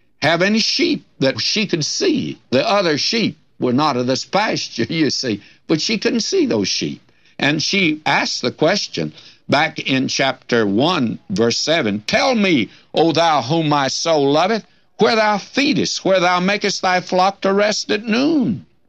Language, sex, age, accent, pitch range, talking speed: English, male, 60-79, American, 125-170 Hz, 170 wpm